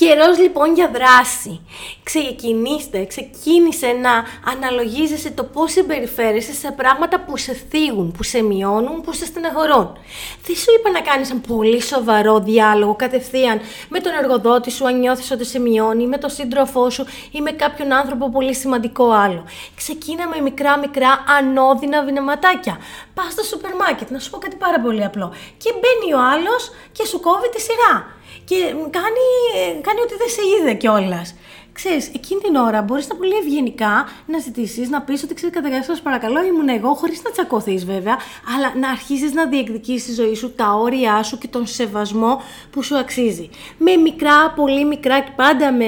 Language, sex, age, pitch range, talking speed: Greek, female, 20-39, 230-300 Hz, 175 wpm